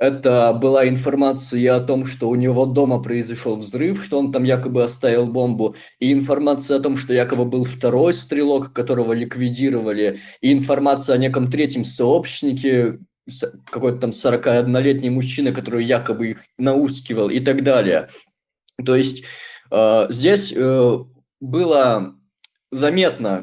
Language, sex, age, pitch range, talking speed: Russian, male, 20-39, 125-145 Hz, 130 wpm